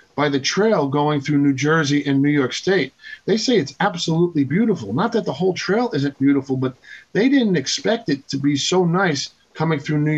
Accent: American